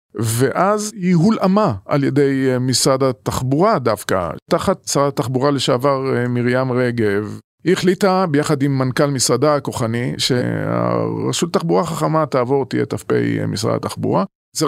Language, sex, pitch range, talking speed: Hebrew, male, 125-170 Hz, 125 wpm